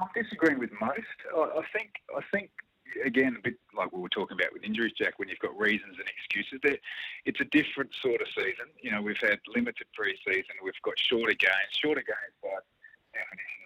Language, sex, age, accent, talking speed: English, male, 30-49, Australian, 200 wpm